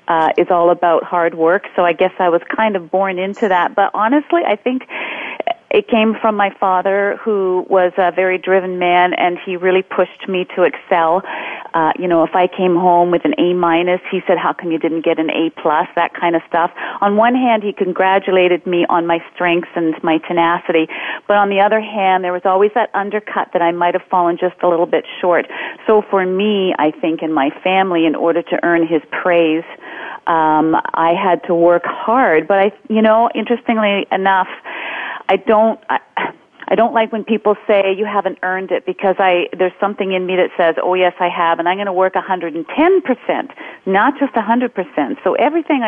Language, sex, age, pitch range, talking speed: English, female, 40-59, 175-210 Hz, 205 wpm